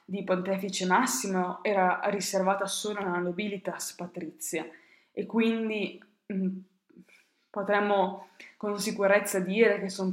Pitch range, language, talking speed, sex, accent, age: 180-200 Hz, Italian, 105 wpm, female, native, 20-39